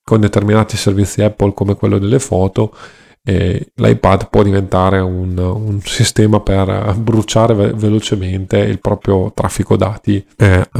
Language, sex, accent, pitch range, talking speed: Italian, male, native, 100-115 Hz, 120 wpm